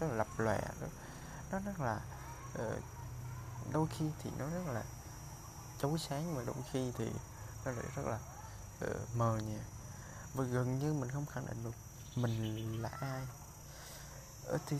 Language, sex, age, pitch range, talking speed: Vietnamese, male, 20-39, 105-140 Hz, 155 wpm